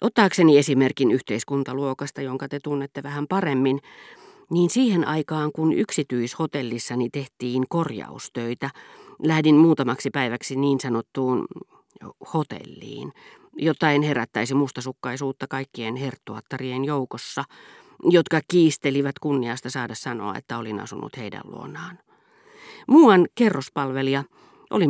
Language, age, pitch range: Finnish, 40-59, 130-165 Hz